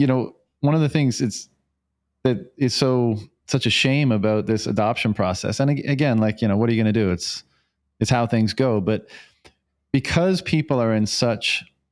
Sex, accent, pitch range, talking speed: male, American, 105-135 Hz, 195 wpm